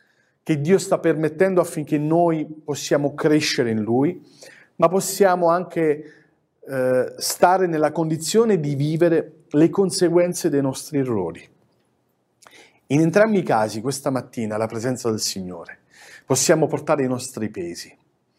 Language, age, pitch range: Italian, 40-59, 135-185 Hz